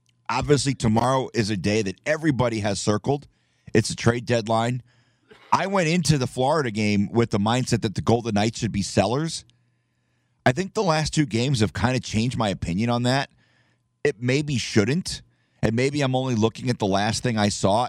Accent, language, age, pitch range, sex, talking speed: American, English, 30-49, 110-135 Hz, male, 190 wpm